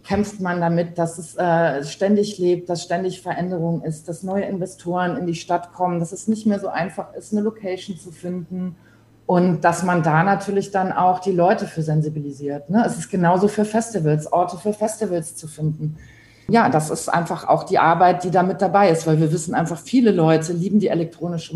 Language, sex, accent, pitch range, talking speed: German, female, German, 160-195 Hz, 205 wpm